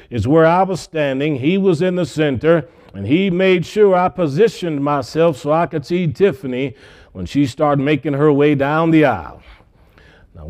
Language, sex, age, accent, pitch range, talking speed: English, male, 40-59, American, 130-170 Hz, 185 wpm